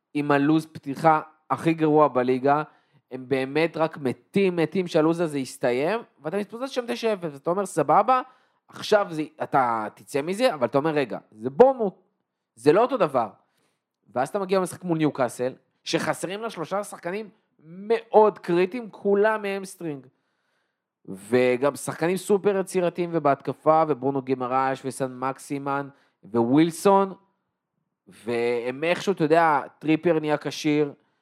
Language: Hebrew